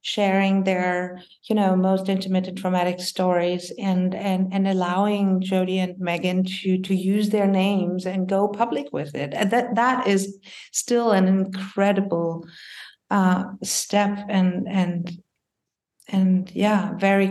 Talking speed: 140 wpm